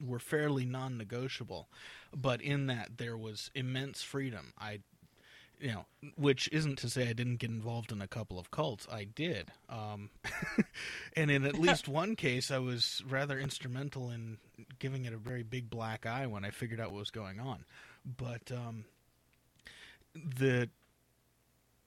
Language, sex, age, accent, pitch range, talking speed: English, male, 30-49, American, 110-140 Hz, 160 wpm